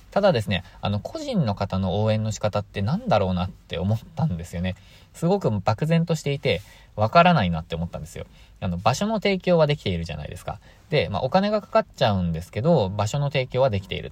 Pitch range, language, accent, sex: 90-130 Hz, Japanese, native, male